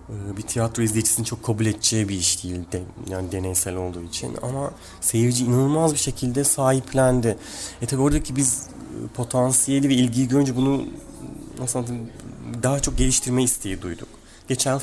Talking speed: 140 wpm